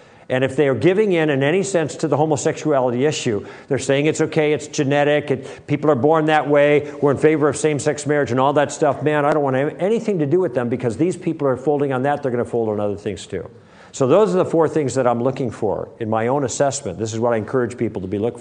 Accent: American